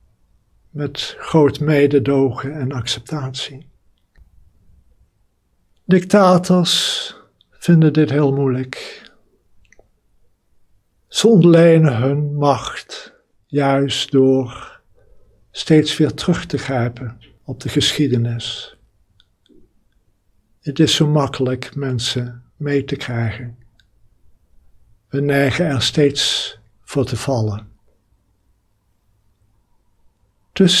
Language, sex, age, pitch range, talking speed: Dutch, male, 60-79, 105-155 Hz, 80 wpm